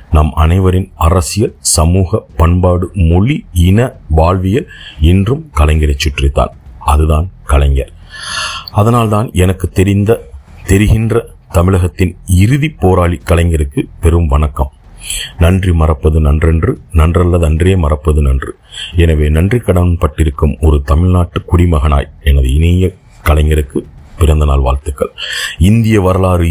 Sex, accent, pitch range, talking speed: male, native, 75-90 Hz, 100 wpm